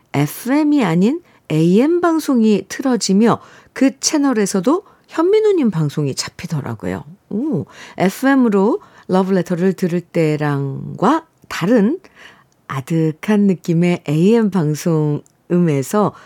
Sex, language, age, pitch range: female, Korean, 50-69, 155-215 Hz